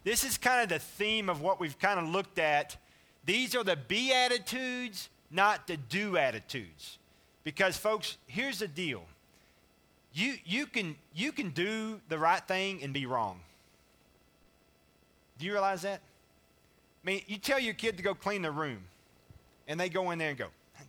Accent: American